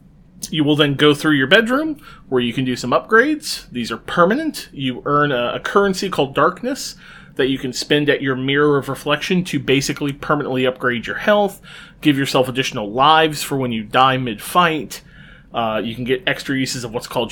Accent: American